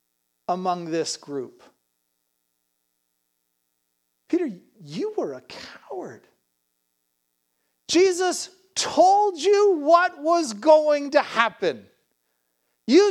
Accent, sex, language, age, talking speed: American, male, English, 40-59, 80 wpm